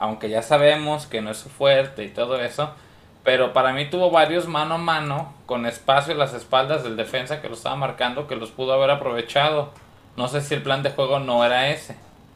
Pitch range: 115-150 Hz